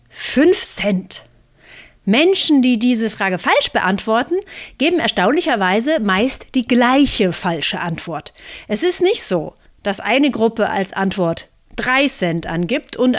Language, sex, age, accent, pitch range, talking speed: German, female, 30-49, German, 190-275 Hz, 125 wpm